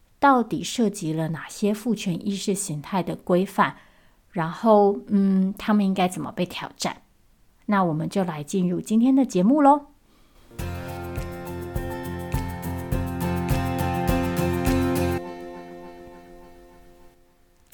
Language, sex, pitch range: Chinese, female, 165-230 Hz